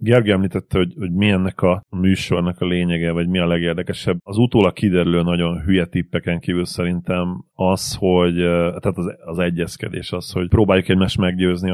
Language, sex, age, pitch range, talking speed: Hungarian, male, 30-49, 90-100 Hz, 165 wpm